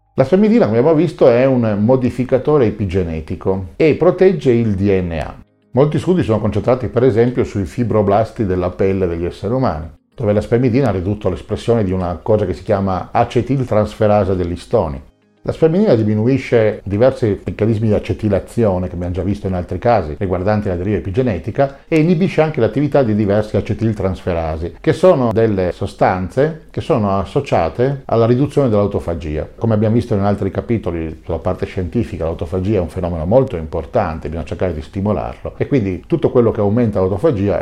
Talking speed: 165 wpm